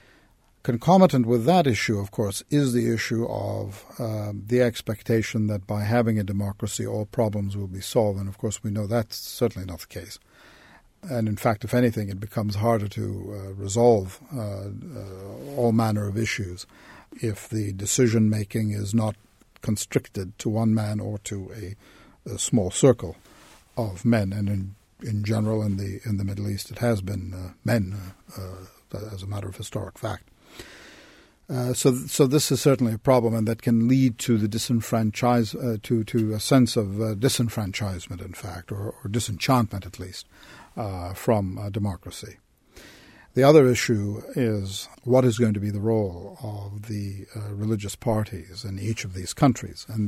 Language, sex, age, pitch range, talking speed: English, male, 50-69, 100-120 Hz, 175 wpm